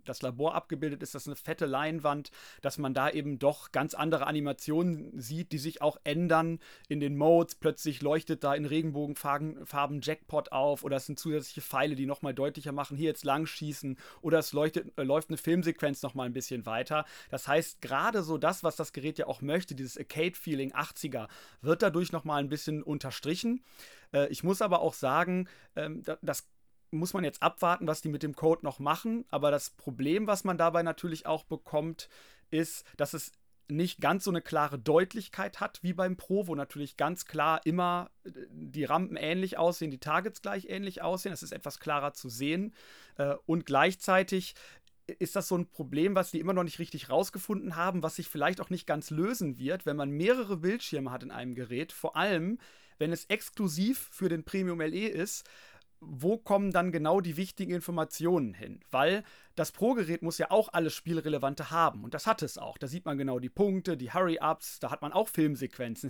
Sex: male